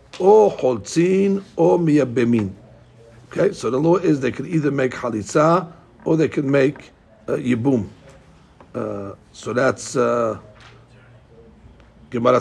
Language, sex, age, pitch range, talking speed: English, male, 60-79, 115-165 Hz, 110 wpm